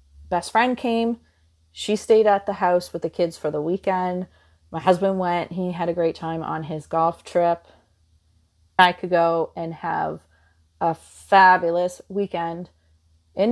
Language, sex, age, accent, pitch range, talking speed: English, female, 30-49, American, 140-200 Hz, 155 wpm